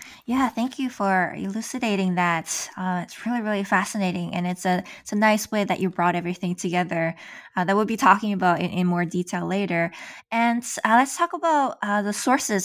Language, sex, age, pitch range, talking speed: English, female, 20-39, 180-220 Hz, 200 wpm